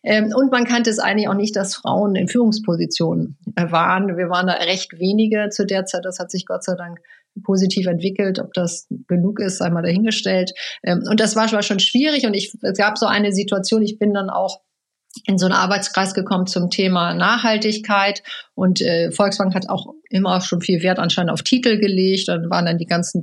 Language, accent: German, German